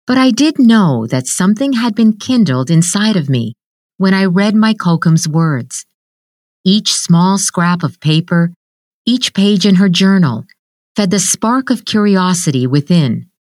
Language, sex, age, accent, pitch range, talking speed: English, female, 50-69, American, 145-195 Hz, 150 wpm